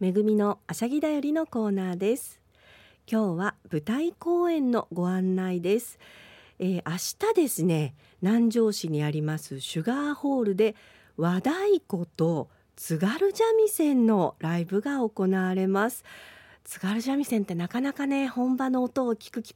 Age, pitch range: 50-69, 160-245 Hz